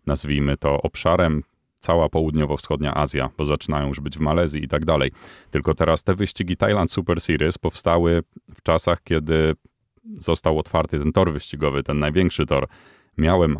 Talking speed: 155 wpm